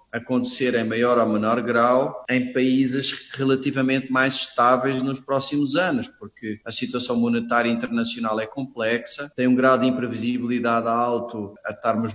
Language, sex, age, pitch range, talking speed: Portuguese, male, 20-39, 115-145 Hz, 145 wpm